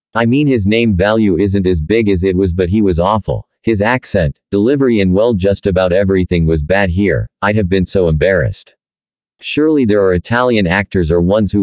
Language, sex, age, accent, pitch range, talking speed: English, male, 50-69, American, 90-115 Hz, 200 wpm